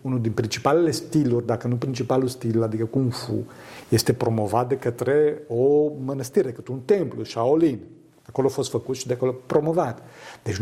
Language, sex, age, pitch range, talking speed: Romanian, male, 50-69, 120-160 Hz, 175 wpm